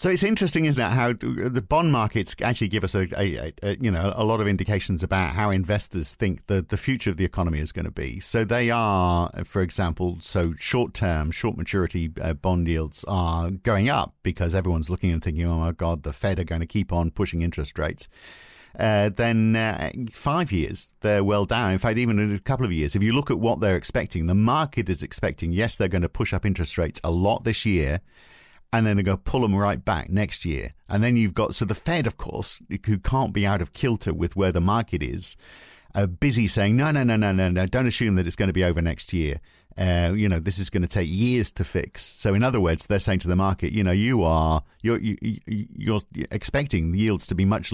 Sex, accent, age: male, British, 50-69